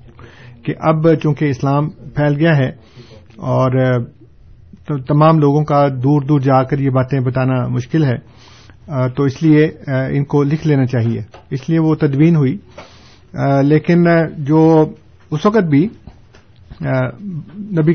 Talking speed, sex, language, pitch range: 135 wpm, male, Urdu, 130-155 Hz